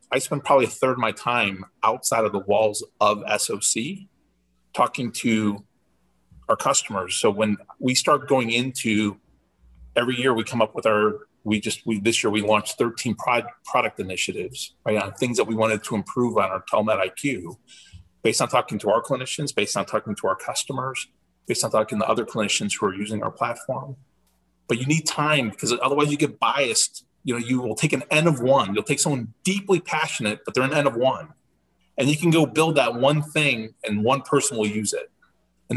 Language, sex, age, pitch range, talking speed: English, male, 30-49, 105-140 Hz, 205 wpm